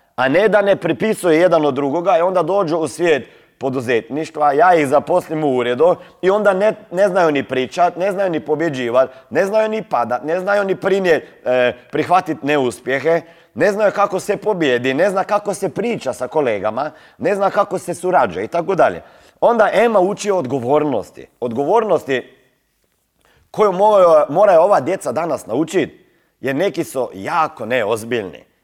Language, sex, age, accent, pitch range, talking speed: Croatian, male, 30-49, native, 140-200 Hz, 165 wpm